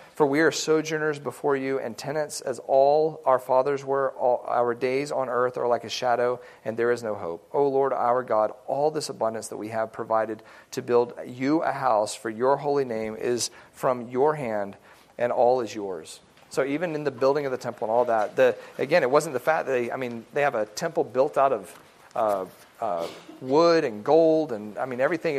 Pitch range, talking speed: 120-145 Hz, 220 wpm